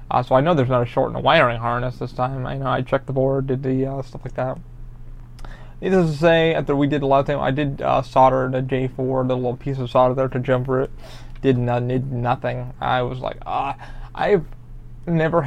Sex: male